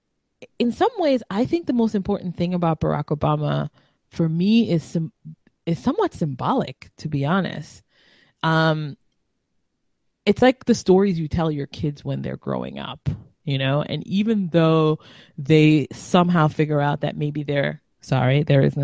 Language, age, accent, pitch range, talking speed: English, 20-39, American, 145-190 Hz, 160 wpm